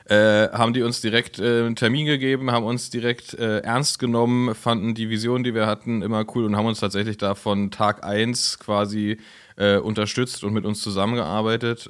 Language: German